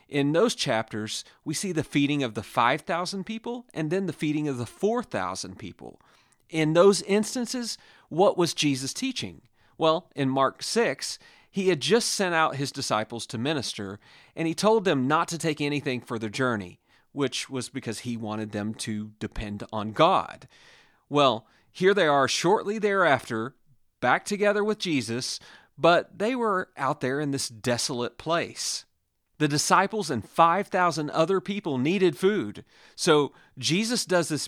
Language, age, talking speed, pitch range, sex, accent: English, 40-59, 160 wpm, 120-185 Hz, male, American